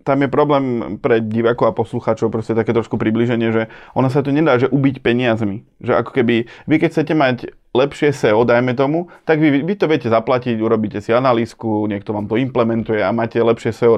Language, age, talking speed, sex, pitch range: Slovak, 20-39, 200 wpm, male, 115-135 Hz